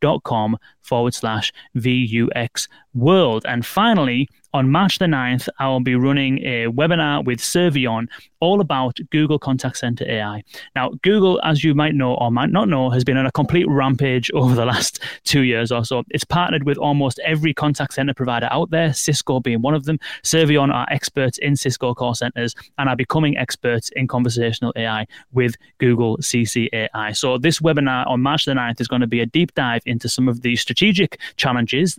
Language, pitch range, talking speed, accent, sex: English, 120-150 Hz, 190 wpm, British, male